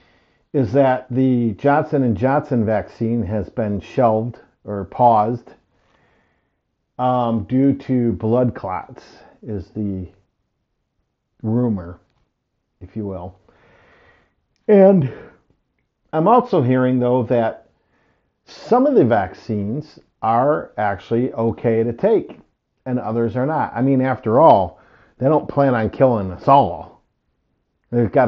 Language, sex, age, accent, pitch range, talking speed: English, male, 50-69, American, 110-135 Hz, 115 wpm